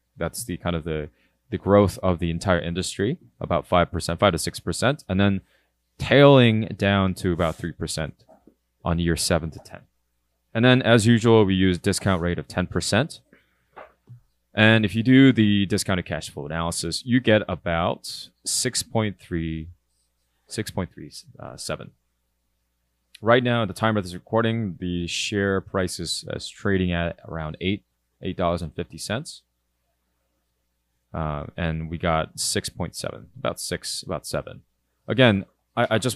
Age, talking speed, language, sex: 20-39, 150 wpm, English, male